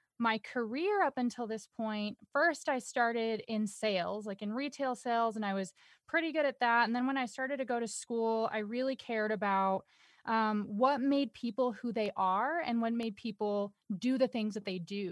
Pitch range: 210-260 Hz